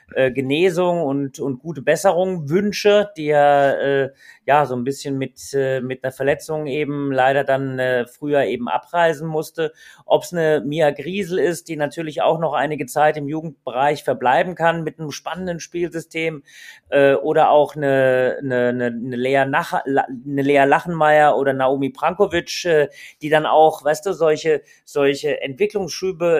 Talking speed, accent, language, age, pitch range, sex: 160 wpm, German, German, 30-49, 140-170 Hz, male